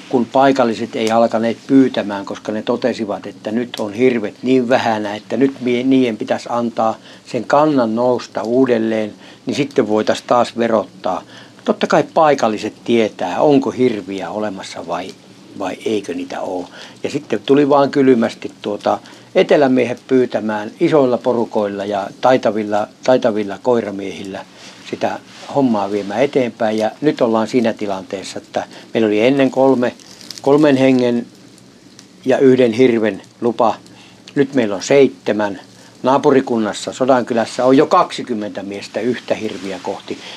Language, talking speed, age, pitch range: Finnish, 130 wpm, 60-79, 105-130 Hz